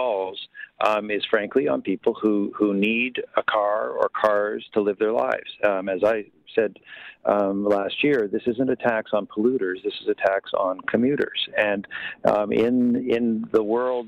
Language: English